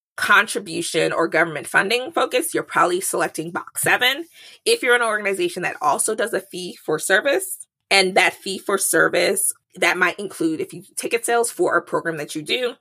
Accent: American